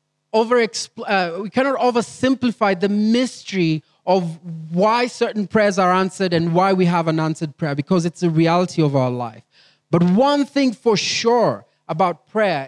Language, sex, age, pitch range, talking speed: English, male, 30-49, 155-205 Hz, 160 wpm